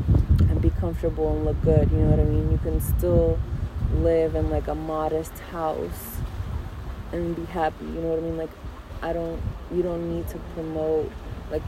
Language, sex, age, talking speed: English, female, 20-39, 185 wpm